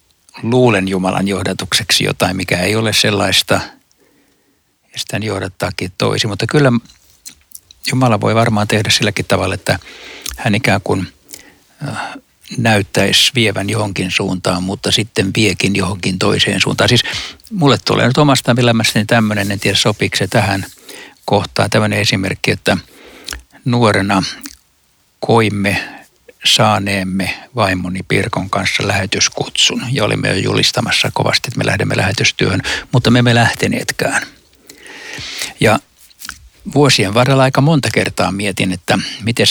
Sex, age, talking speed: male, 60-79, 120 wpm